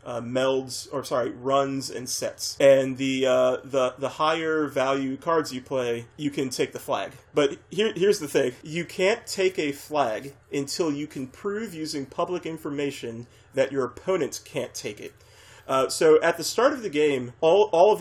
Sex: male